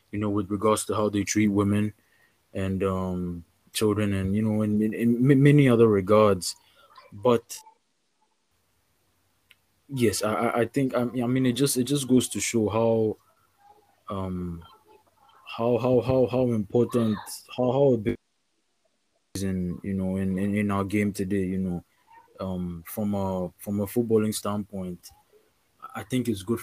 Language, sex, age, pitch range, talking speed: English, male, 20-39, 100-115 Hz, 155 wpm